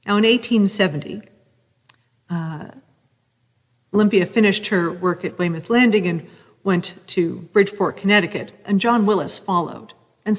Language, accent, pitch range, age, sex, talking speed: English, American, 155-195 Hz, 40-59, female, 120 wpm